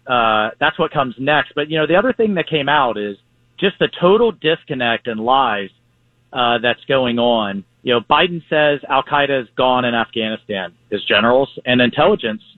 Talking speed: 185 wpm